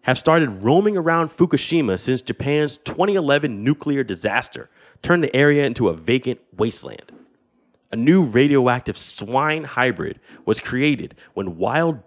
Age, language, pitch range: 30-49, English, 100-140 Hz